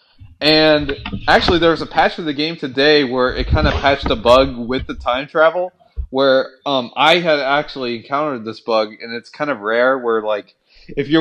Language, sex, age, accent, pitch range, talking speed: English, male, 20-39, American, 115-165 Hz, 205 wpm